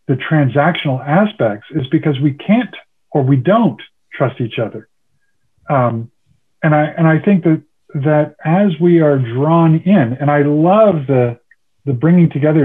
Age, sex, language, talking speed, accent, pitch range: 50-69, male, English, 155 wpm, American, 125-165 Hz